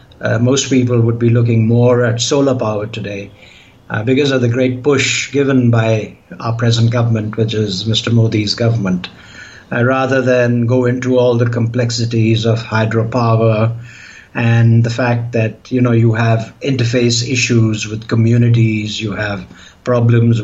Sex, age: male, 60-79